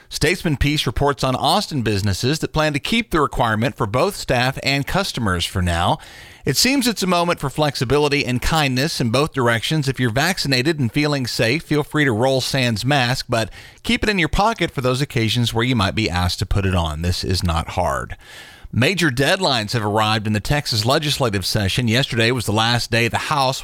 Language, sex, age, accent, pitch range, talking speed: English, male, 40-59, American, 105-135 Hz, 205 wpm